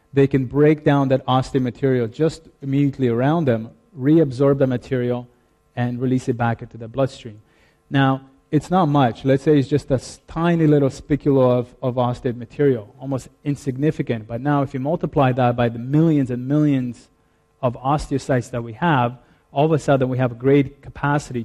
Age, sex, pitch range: 30-49, male, 120-140 Hz